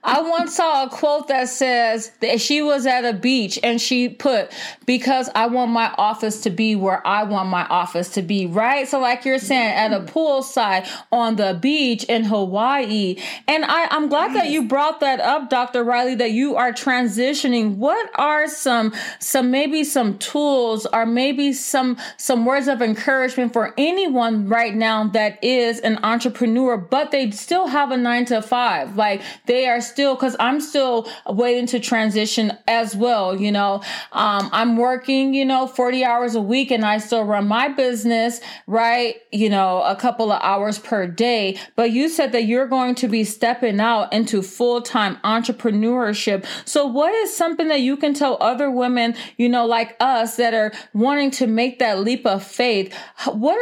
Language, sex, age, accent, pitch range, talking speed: English, female, 30-49, American, 220-270 Hz, 185 wpm